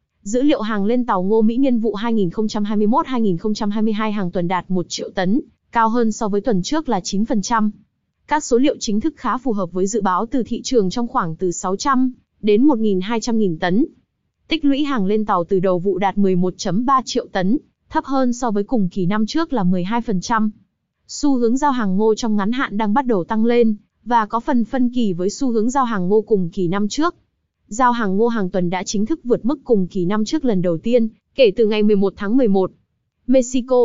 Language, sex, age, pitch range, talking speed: Vietnamese, female, 20-39, 195-250 Hz, 210 wpm